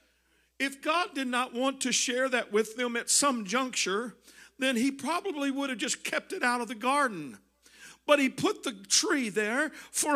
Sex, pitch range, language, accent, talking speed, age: male, 230-280 Hz, English, American, 190 wpm, 50-69